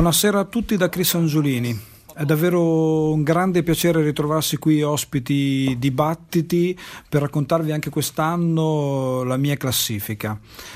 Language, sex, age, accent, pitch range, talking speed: Italian, male, 40-59, native, 120-155 Hz, 125 wpm